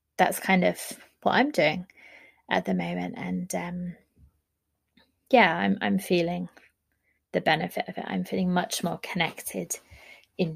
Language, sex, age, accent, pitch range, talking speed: English, female, 20-39, British, 175-215 Hz, 140 wpm